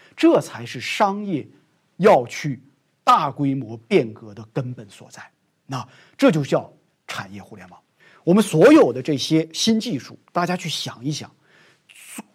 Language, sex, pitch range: Chinese, male, 125-180 Hz